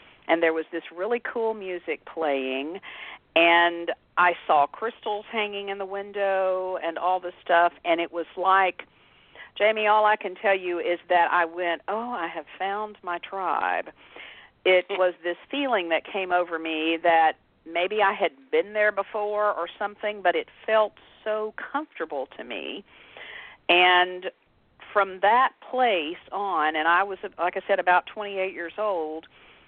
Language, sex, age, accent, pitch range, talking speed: English, female, 50-69, American, 160-200 Hz, 160 wpm